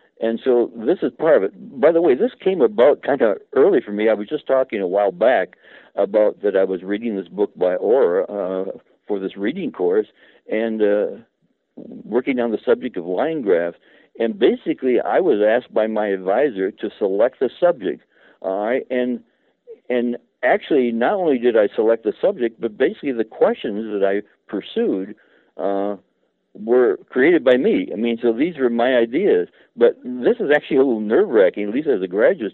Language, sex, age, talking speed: English, male, 60-79, 190 wpm